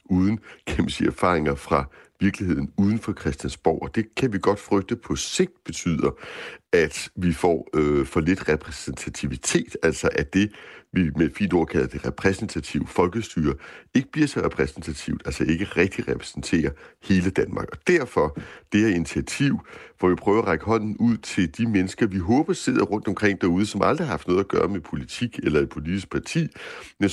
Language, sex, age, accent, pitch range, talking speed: Danish, male, 60-79, native, 85-110 Hz, 175 wpm